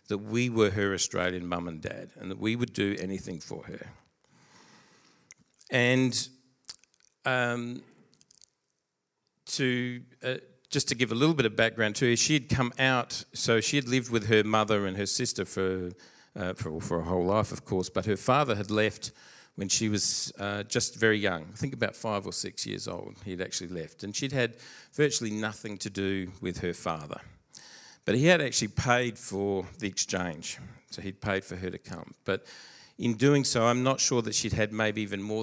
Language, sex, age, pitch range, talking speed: English, male, 50-69, 100-125 Hz, 190 wpm